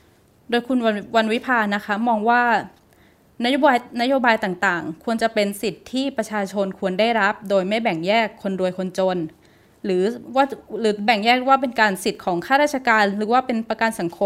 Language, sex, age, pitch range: Thai, female, 20-39, 190-235 Hz